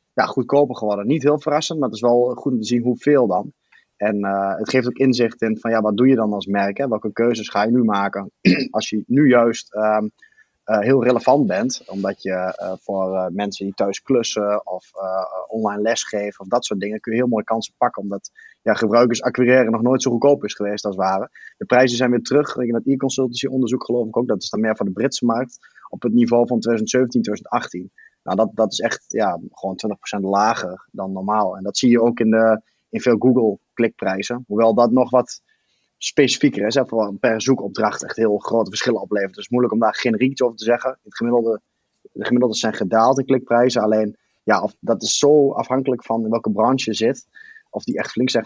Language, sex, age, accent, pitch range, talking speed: Dutch, male, 20-39, Dutch, 105-125 Hz, 225 wpm